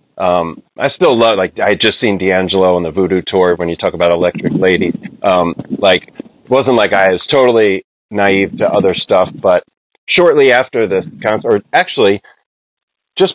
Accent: American